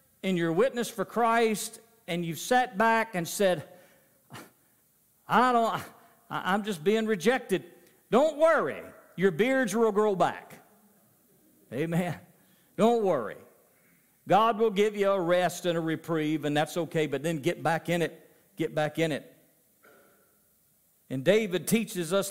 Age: 50-69